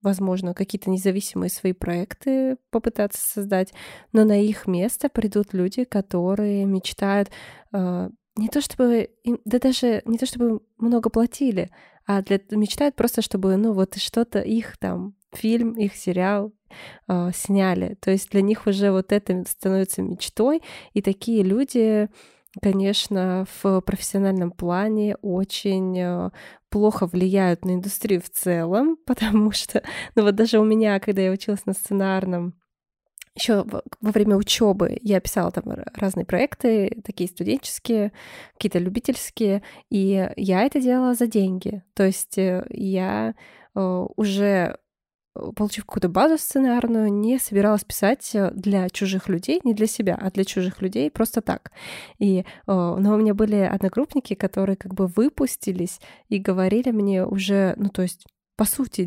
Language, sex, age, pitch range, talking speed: Russian, female, 20-39, 190-230 Hz, 140 wpm